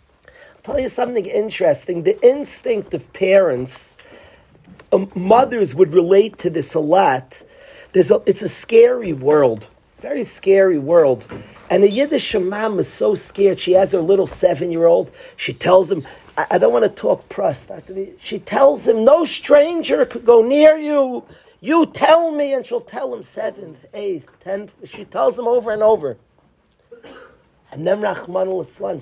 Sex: male